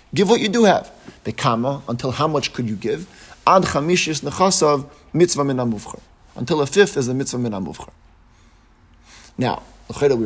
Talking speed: 145 wpm